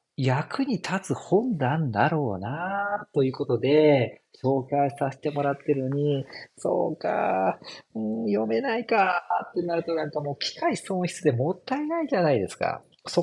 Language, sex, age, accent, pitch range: Japanese, male, 40-59, native, 130-210 Hz